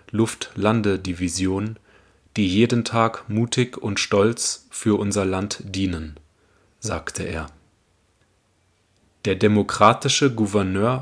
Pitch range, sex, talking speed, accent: 95-115 Hz, male, 95 wpm, German